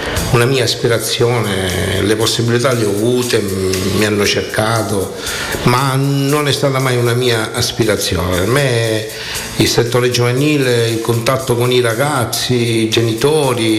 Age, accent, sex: 60-79, native, male